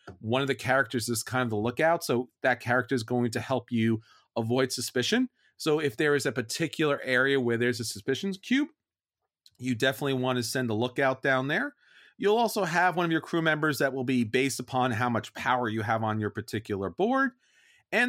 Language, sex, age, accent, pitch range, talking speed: English, male, 30-49, American, 125-180 Hz, 210 wpm